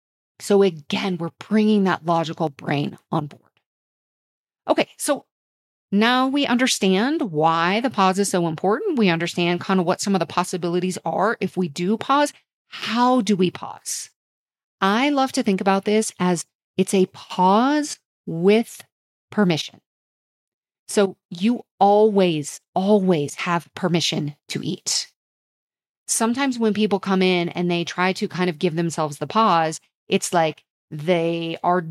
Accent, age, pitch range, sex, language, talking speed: American, 30-49, 175-220 Hz, female, English, 145 wpm